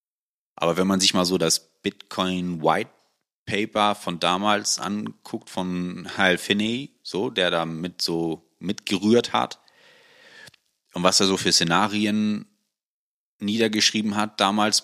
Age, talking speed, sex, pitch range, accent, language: 30-49, 130 wpm, male, 85-110 Hz, German, German